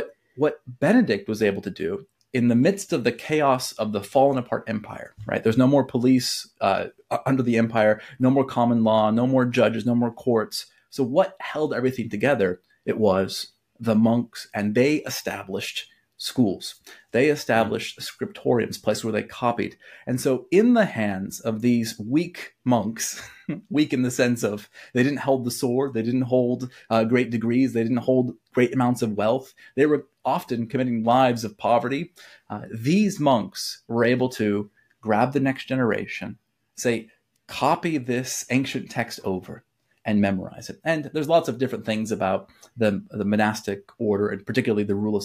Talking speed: 175 wpm